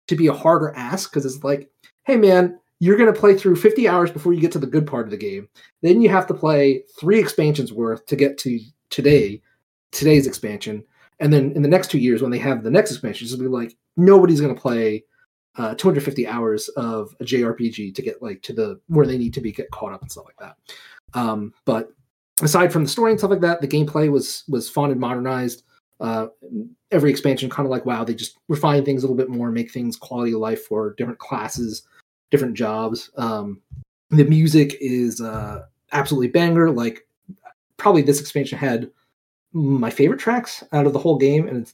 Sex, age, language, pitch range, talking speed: male, 30-49, English, 120-165 Hz, 210 wpm